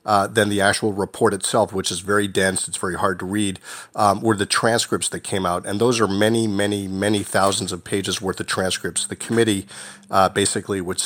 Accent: American